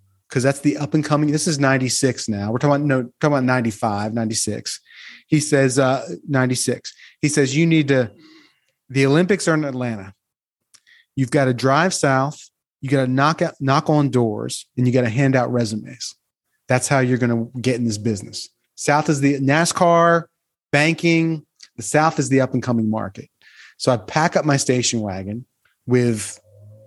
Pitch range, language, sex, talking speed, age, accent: 120-150 Hz, English, male, 180 wpm, 30-49, American